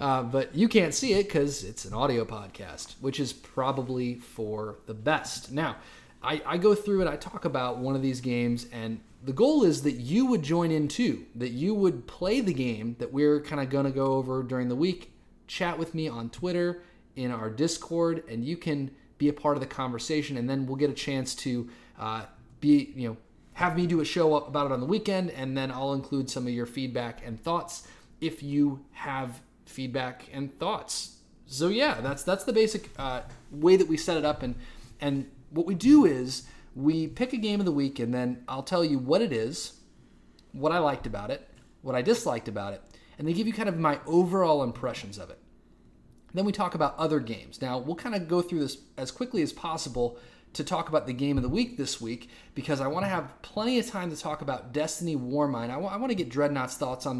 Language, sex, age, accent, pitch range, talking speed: English, male, 30-49, American, 125-170 Hz, 225 wpm